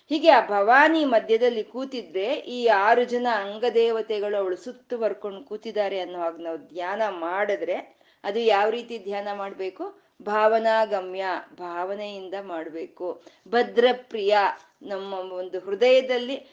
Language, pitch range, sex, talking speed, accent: Kannada, 195-245 Hz, female, 105 wpm, native